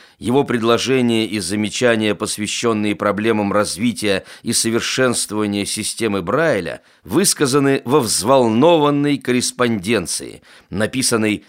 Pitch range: 105-130 Hz